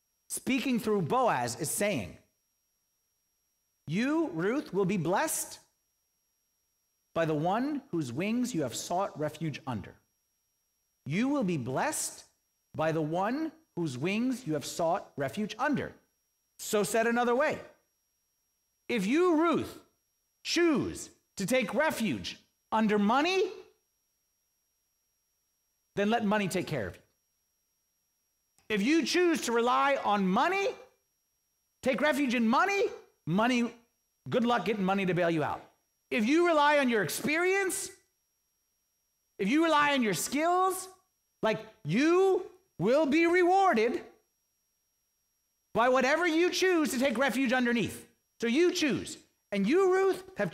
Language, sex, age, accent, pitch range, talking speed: English, male, 40-59, American, 205-325 Hz, 125 wpm